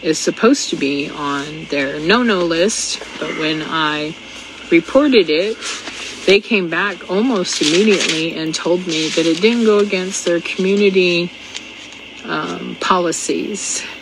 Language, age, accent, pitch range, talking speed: English, 40-59, American, 155-210 Hz, 130 wpm